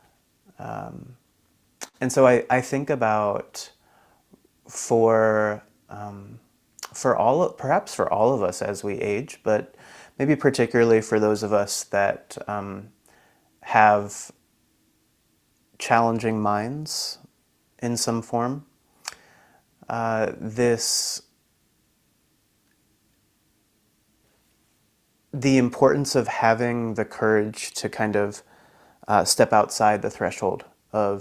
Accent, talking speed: American, 100 wpm